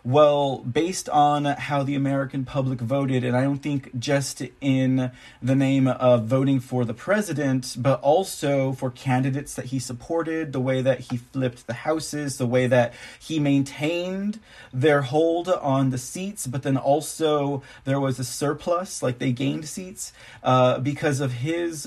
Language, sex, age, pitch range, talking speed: English, male, 30-49, 130-155 Hz, 160 wpm